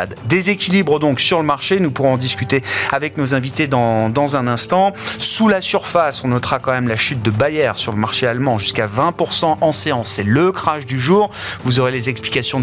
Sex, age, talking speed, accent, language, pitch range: male, 30-49, 205 wpm, French, French, 120-155 Hz